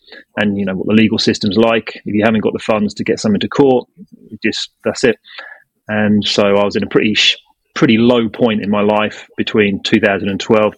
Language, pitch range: English, 105-120 Hz